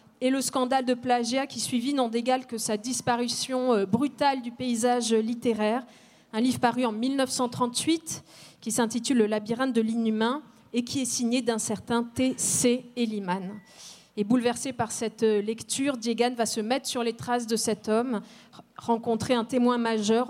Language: French